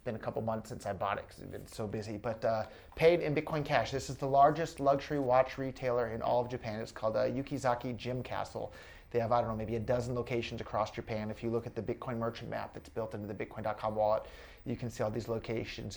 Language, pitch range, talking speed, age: English, 105-125 Hz, 250 wpm, 30-49